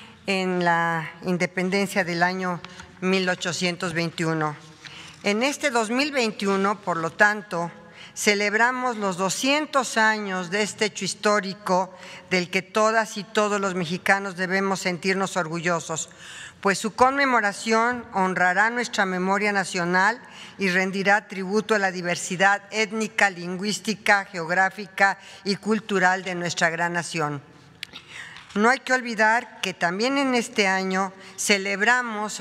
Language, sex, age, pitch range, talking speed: Spanish, female, 50-69, 180-210 Hz, 115 wpm